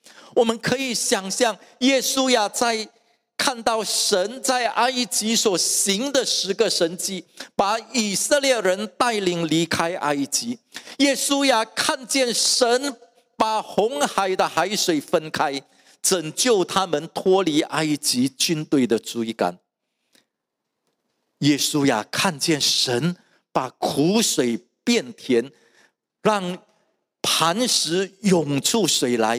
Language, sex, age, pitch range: English, male, 50-69, 160-245 Hz